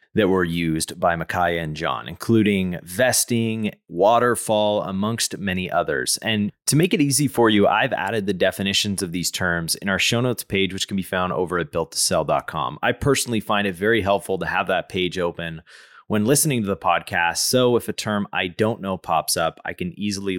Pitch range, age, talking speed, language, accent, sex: 90-120 Hz, 30-49, 195 wpm, English, American, male